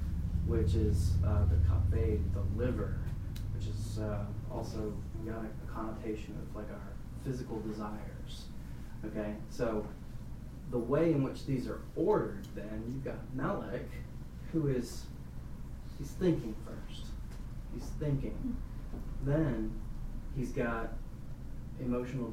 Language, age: English, 30-49